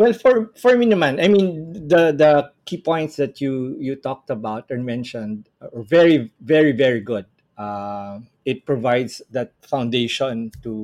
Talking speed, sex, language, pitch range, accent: 160 wpm, male, English, 120-165 Hz, Filipino